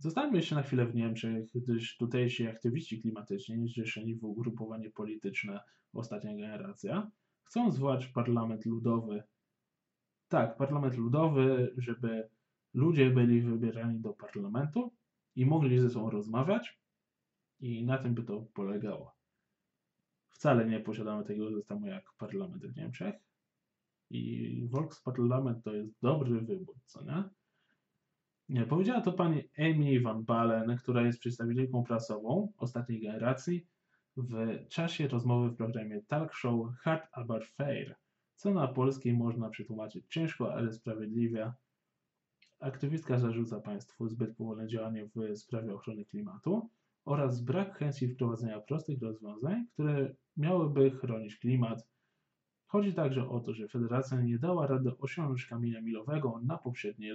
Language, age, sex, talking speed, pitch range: Polish, 20-39, male, 130 wpm, 115-145 Hz